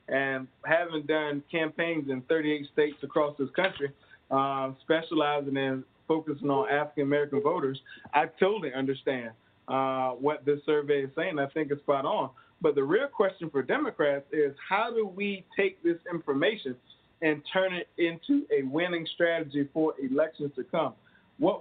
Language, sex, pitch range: English, male, 145-190 Hz